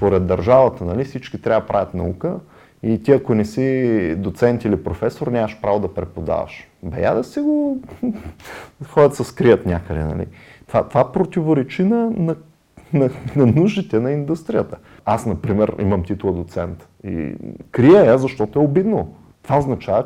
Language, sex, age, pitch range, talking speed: Bulgarian, male, 30-49, 90-130 Hz, 155 wpm